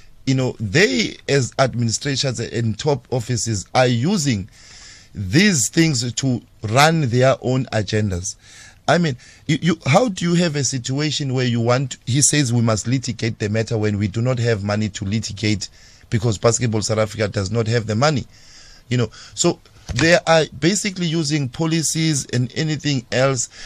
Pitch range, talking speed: 110-145 Hz, 165 wpm